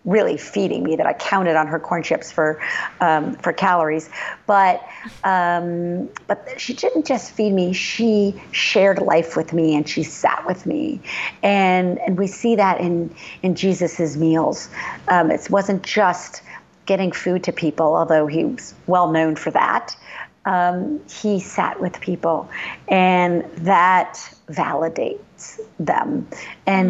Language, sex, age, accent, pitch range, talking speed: English, female, 50-69, American, 160-195 Hz, 145 wpm